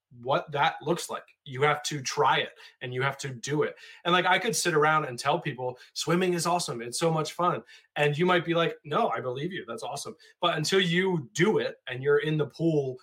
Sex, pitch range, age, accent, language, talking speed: male, 130-165 Hz, 20-39, American, English, 240 wpm